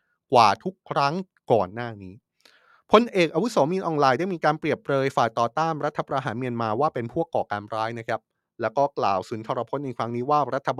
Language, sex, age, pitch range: Thai, male, 20-39, 115-155 Hz